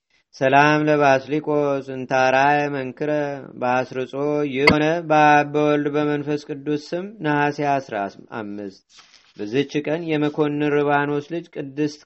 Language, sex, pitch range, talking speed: Amharic, male, 135-150 Hz, 85 wpm